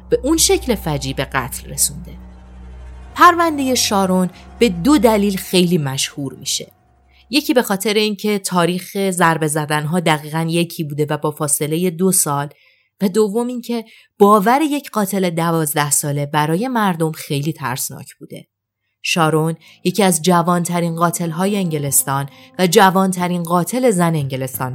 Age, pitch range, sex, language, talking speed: 30-49, 145-225 Hz, female, Persian, 130 wpm